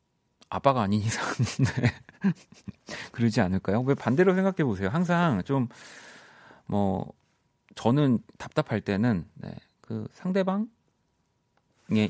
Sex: male